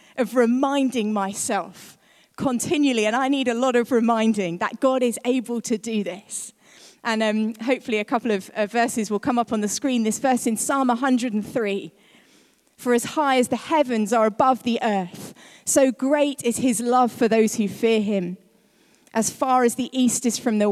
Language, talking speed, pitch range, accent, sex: English, 190 wpm, 220-270 Hz, British, female